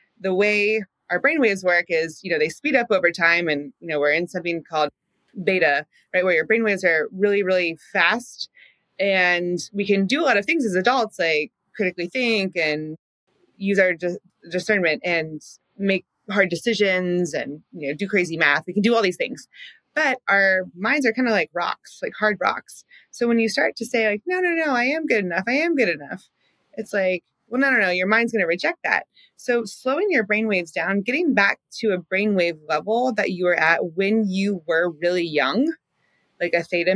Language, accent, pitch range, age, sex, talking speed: English, American, 175-230 Hz, 30-49, female, 205 wpm